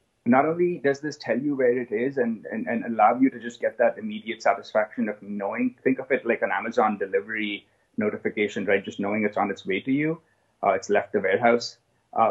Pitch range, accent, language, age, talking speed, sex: 105-140 Hz, Indian, English, 30-49, 220 wpm, male